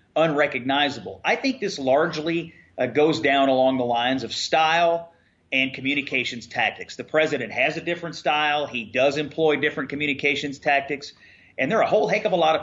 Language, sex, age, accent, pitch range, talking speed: English, male, 30-49, American, 130-160 Hz, 180 wpm